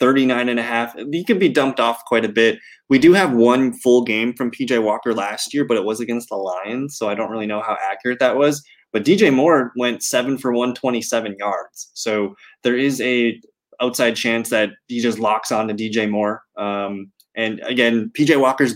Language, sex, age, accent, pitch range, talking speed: English, male, 20-39, American, 110-130 Hz, 215 wpm